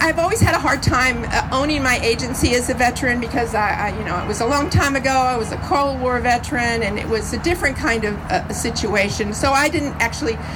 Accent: American